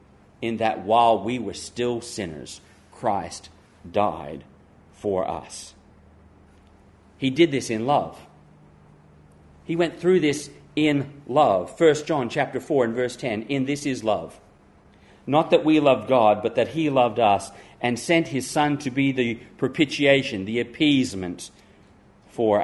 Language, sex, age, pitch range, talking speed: English, male, 40-59, 100-140 Hz, 145 wpm